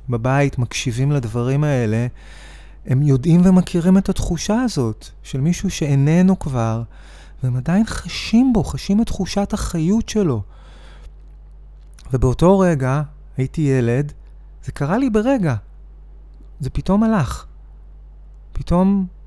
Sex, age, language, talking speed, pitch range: male, 30-49, Hebrew, 110 wpm, 115-155 Hz